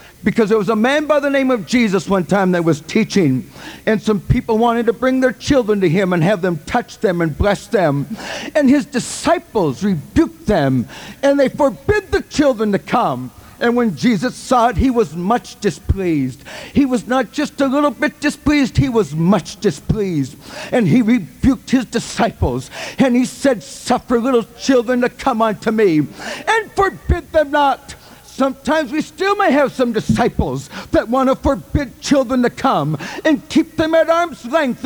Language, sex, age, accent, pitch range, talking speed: English, male, 60-79, American, 230-300 Hz, 180 wpm